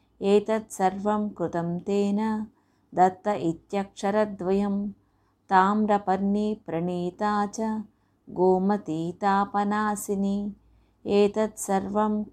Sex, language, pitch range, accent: female, Telugu, 185-210 Hz, native